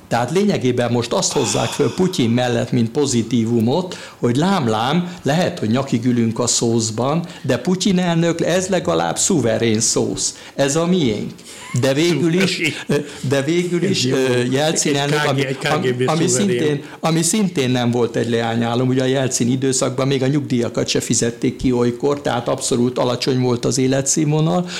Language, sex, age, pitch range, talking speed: Hungarian, male, 60-79, 120-160 Hz, 140 wpm